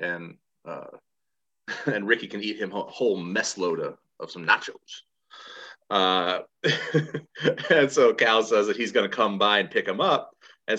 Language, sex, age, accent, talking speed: English, male, 30-49, American, 165 wpm